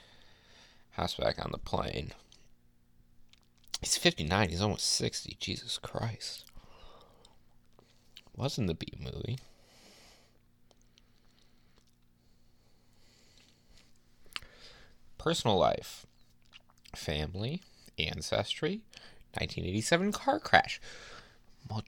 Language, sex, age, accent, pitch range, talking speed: English, male, 30-49, American, 75-105 Hz, 60 wpm